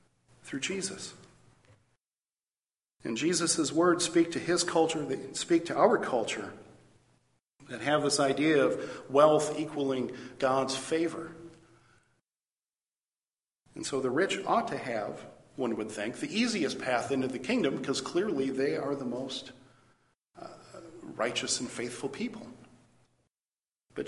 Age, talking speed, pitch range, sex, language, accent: 50-69, 125 wpm, 125-160 Hz, male, English, American